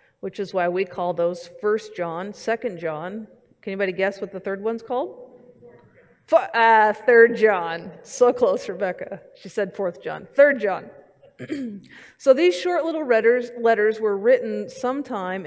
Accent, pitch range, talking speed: American, 180-240 Hz, 145 wpm